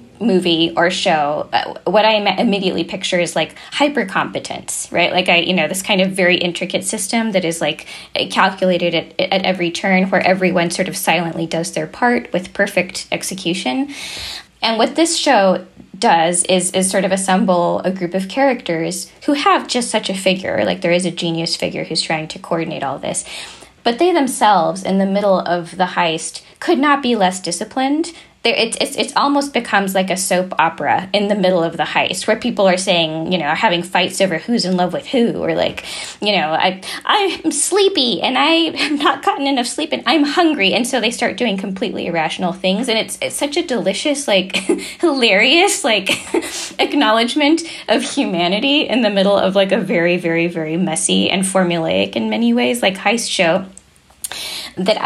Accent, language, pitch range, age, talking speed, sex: American, English, 175-245 Hz, 10-29, 190 wpm, female